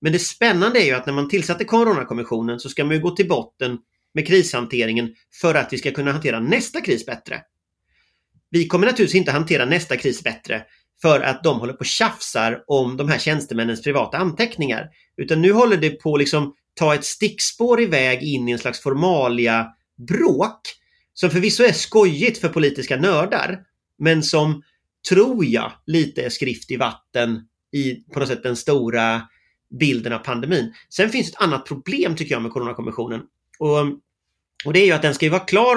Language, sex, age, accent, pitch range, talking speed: English, male, 30-49, Swedish, 125-180 Hz, 185 wpm